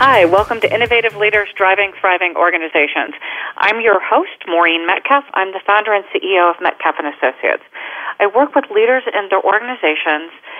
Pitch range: 170-215 Hz